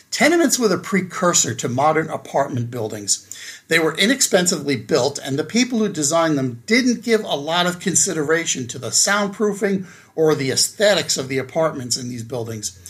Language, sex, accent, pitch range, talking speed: English, male, American, 140-190 Hz, 165 wpm